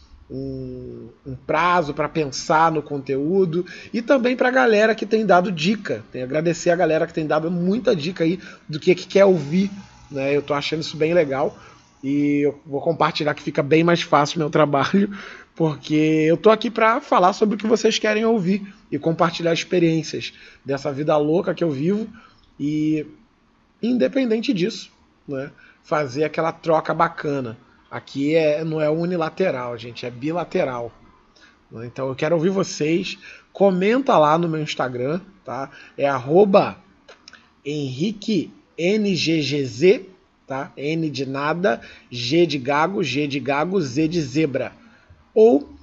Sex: male